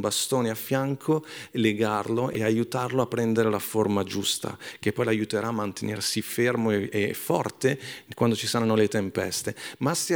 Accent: native